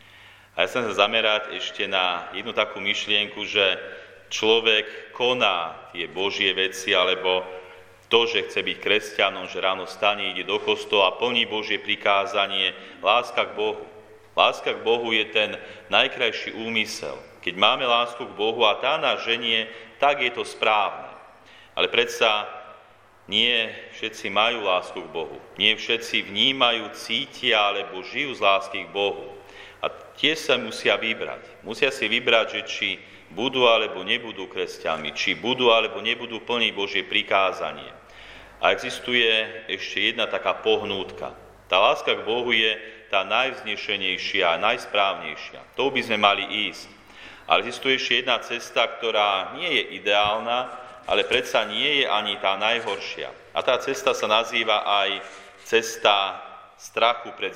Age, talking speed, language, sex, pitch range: 40-59, 145 wpm, Slovak, male, 100-145 Hz